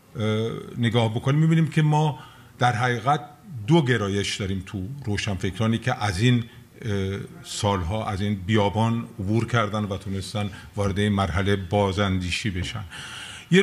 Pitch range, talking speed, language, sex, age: 105-135 Hz, 125 wpm, Persian, male, 50-69